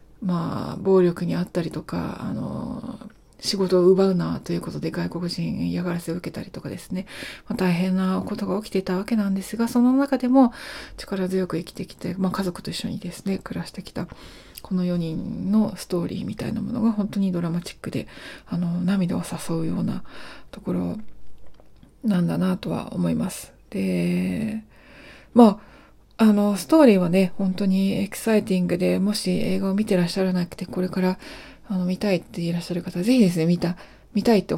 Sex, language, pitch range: female, Japanese, 180-215 Hz